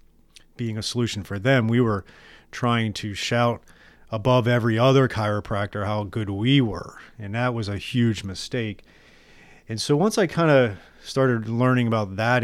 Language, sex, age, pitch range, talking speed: English, male, 30-49, 100-120 Hz, 165 wpm